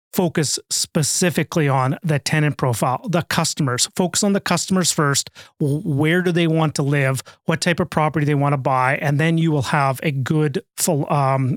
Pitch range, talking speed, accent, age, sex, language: 145-180 Hz, 190 wpm, American, 30-49, male, English